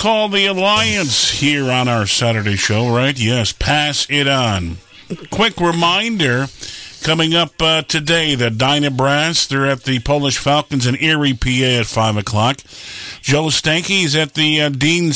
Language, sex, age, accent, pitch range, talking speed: English, male, 50-69, American, 130-170 Hz, 155 wpm